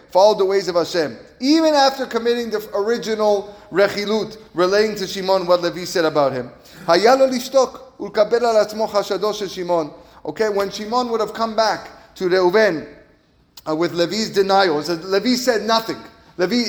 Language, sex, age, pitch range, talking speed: English, male, 30-49, 170-230 Hz, 135 wpm